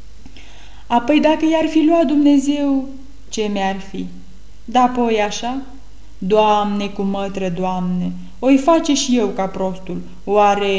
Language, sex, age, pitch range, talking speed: Romanian, female, 20-39, 185-260 Hz, 120 wpm